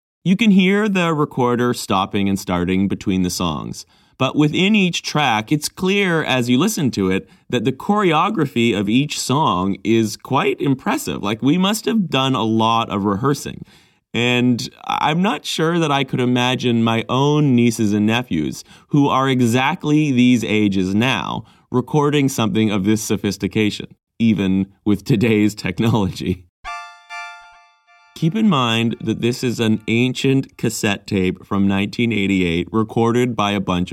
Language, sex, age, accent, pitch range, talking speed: English, male, 30-49, American, 95-130 Hz, 150 wpm